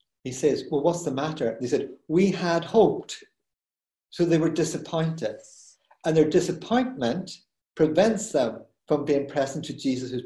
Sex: male